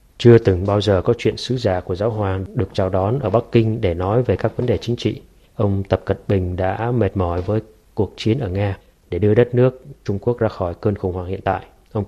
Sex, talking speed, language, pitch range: male, 255 wpm, Vietnamese, 95-115 Hz